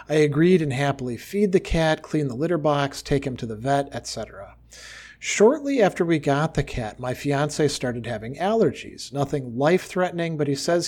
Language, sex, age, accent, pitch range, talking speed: English, male, 40-59, American, 125-155 Hz, 180 wpm